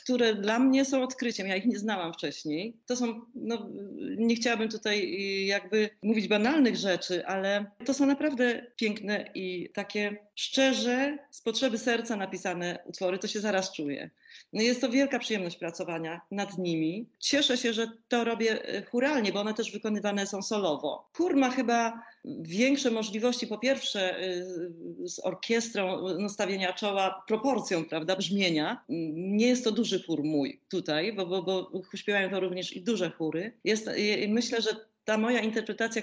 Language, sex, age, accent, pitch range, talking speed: Polish, female, 40-59, native, 190-245 Hz, 155 wpm